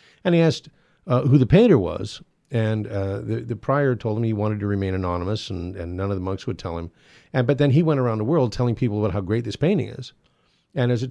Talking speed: 260 wpm